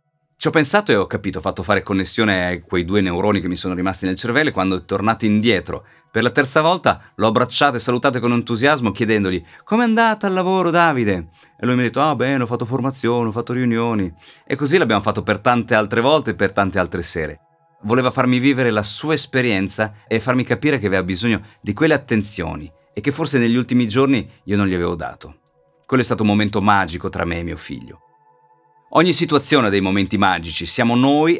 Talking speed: 215 wpm